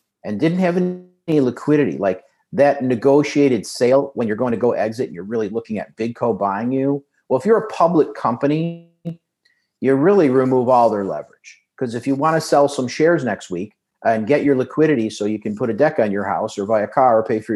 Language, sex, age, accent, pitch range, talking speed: English, male, 50-69, American, 110-140 Hz, 225 wpm